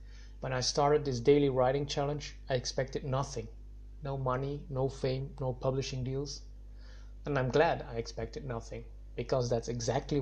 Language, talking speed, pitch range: English, 155 wpm, 115-135 Hz